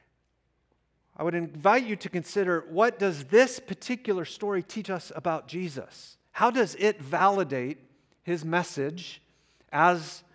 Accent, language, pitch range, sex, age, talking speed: American, English, 145-185 Hz, male, 40-59, 130 wpm